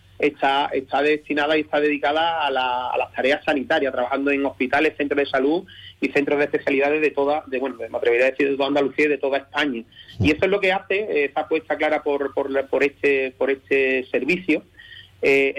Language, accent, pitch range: Spanish, Spanish, 135-160 Hz